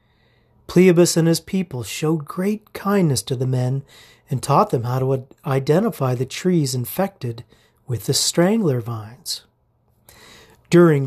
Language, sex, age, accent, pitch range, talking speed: English, male, 40-59, American, 120-175 Hz, 130 wpm